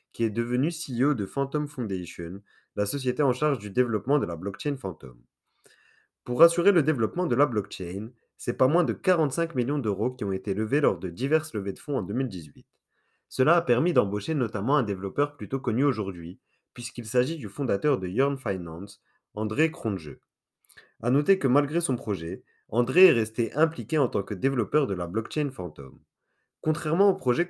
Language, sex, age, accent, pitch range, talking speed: French, male, 30-49, French, 100-145 Hz, 180 wpm